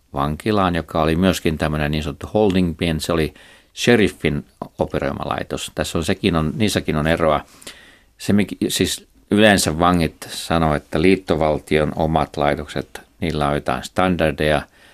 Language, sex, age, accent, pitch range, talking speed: Finnish, male, 50-69, native, 75-90 Hz, 135 wpm